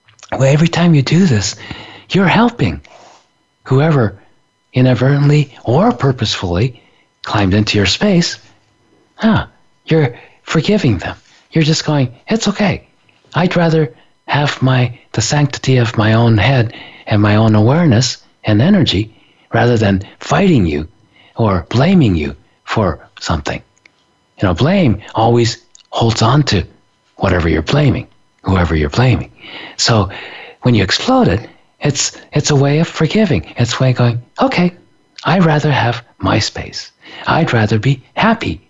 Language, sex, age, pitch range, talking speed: English, male, 40-59, 110-160 Hz, 135 wpm